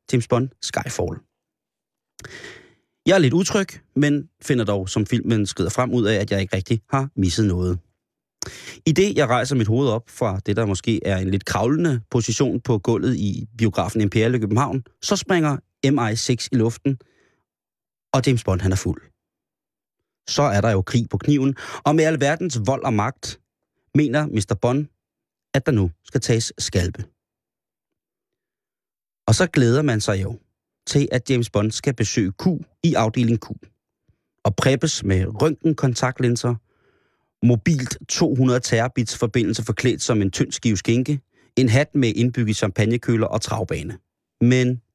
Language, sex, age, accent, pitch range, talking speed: Danish, male, 30-49, native, 105-135 Hz, 155 wpm